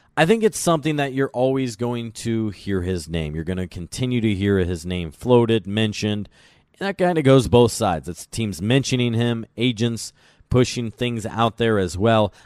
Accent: American